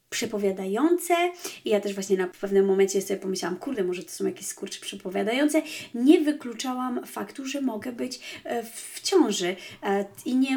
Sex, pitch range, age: female, 200-250 Hz, 30-49